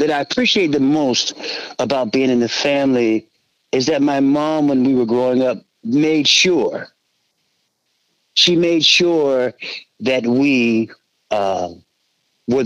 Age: 50-69